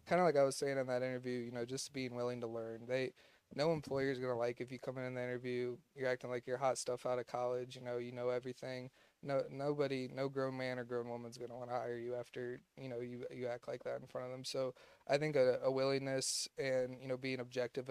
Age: 20-39